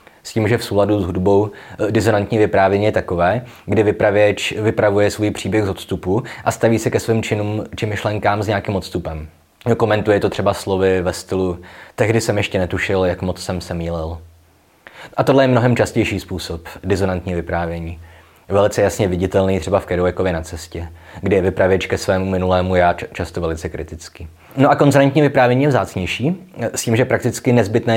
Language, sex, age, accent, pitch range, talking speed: Czech, male, 20-39, native, 90-110 Hz, 175 wpm